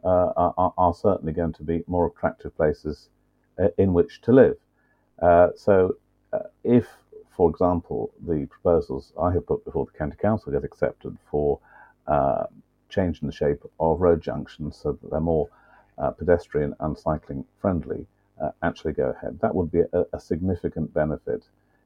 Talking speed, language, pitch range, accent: 165 wpm, English, 85-105 Hz, British